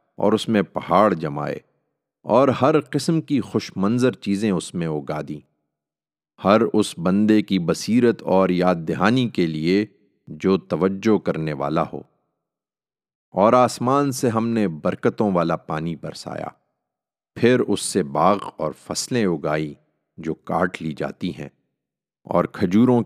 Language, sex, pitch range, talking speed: Urdu, male, 85-115 Hz, 140 wpm